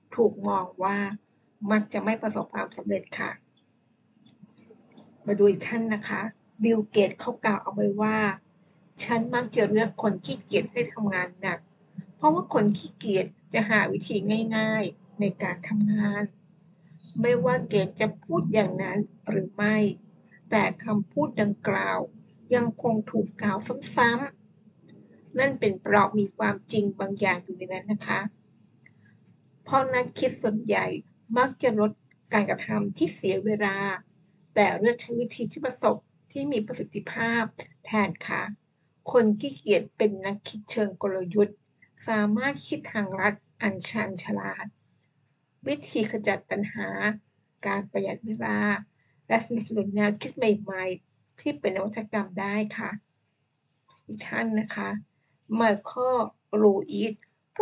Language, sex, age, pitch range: Thai, female, 60-79, 195-225 Hz